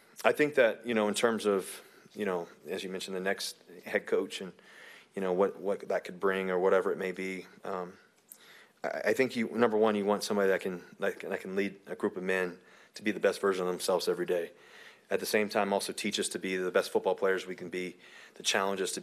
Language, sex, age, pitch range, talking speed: English, male, 30-49, 90-120 Hz, 250 wpm